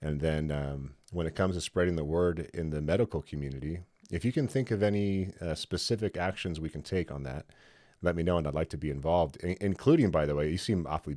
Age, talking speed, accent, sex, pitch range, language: 30-49, 235 wpm, American, male, 75-90 Hz, English